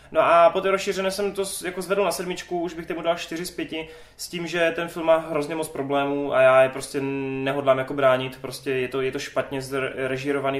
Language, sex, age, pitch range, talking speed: Czech, male, 20-39, 135-145 Hz, 225 wpm